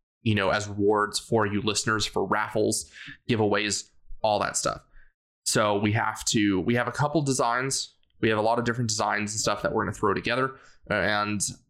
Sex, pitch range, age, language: male, 105-120 Hz, 20-39, English